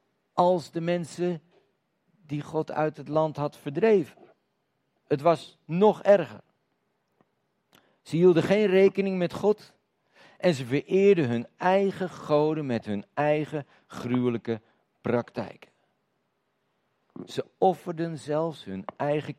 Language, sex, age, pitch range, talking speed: Dutch, male, 50-69, 115-165 Hz, 110 wpm